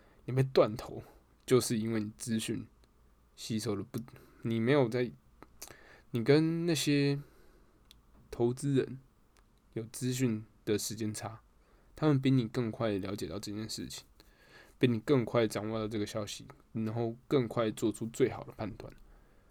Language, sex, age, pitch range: Chinese, male, 10-29, 110-130 Hz